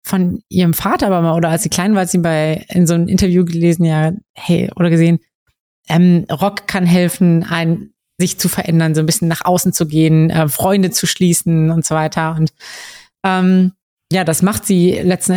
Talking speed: 200 wpm